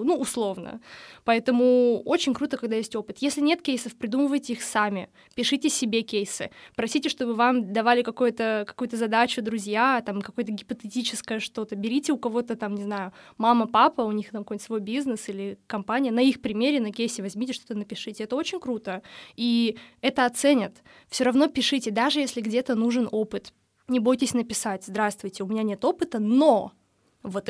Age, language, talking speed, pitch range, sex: 20-39, Russian, 170 wpm, 215-265 Hz, female